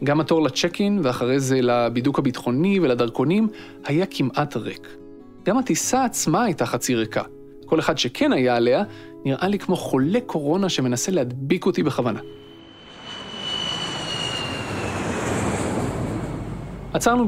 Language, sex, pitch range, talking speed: Hebrew, male, 125-170 Hz, 110 wpm